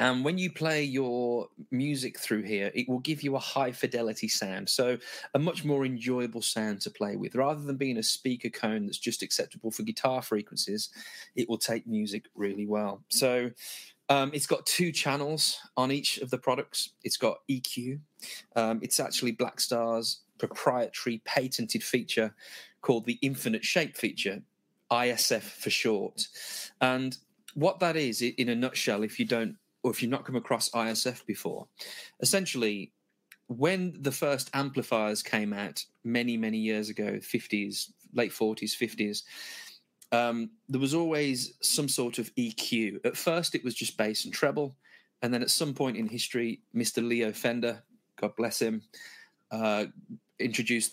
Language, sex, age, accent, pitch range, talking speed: English, male, 30-49, British, 110-140 Hz, 160 wpm